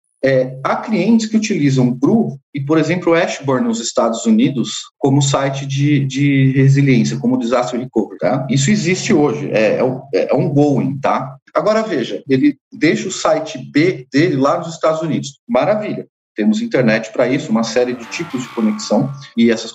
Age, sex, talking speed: 40-59, male, 175 wpm